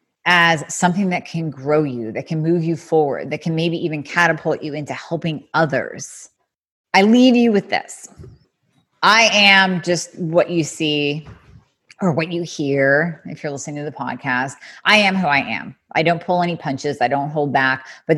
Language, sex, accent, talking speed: English, female, American, 185 wpm